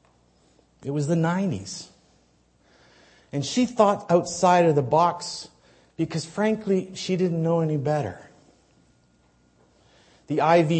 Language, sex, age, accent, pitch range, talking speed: English, male, 50-69, American, 130-195 Hz, 110 wpm